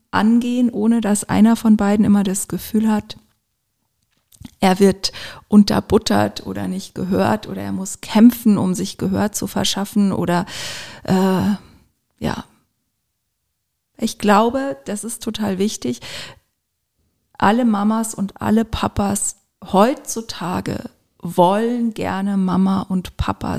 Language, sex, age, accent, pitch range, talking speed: German, female, 40-59, German, 185-220 Hz, 115 wpm